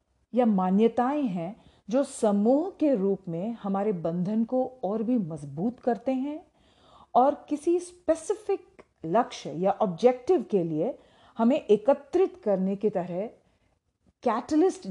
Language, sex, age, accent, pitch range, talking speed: Hindi, female, 40-59, native, 190-275 Hz, 120 wpm